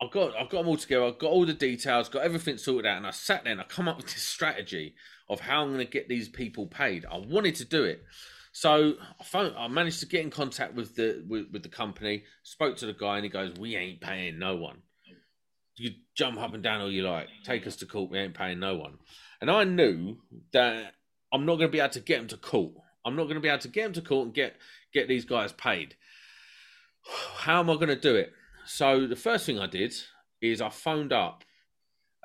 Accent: British